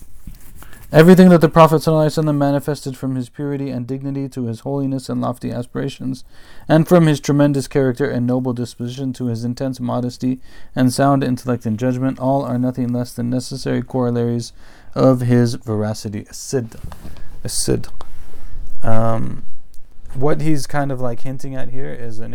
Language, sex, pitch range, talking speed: English, male, 110-130 Hz, 145 wpm